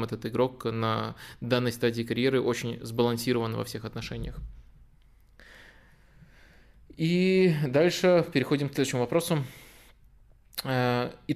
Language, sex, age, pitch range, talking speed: Russian, male, 20-39, 120-145 Hz, 95 wpm